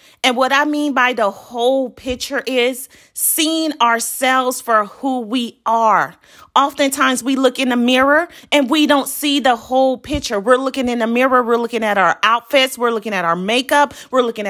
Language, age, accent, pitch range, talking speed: English, 40-59, American, 245-285 Hz, 185 wpm